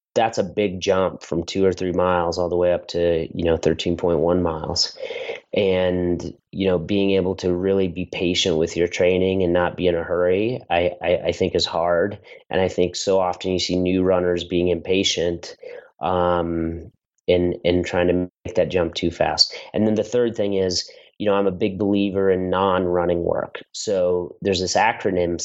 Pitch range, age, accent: 90-105 Hz, 30-49, American